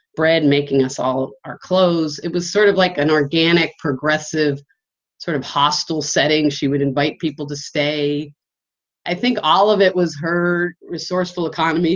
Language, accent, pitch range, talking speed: English, American, 140-175 Hz, 165 wpm